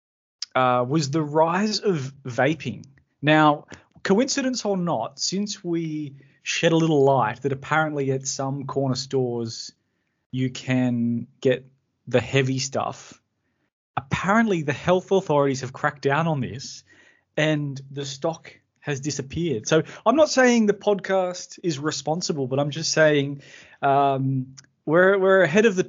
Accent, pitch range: Australian, 135-170 Hz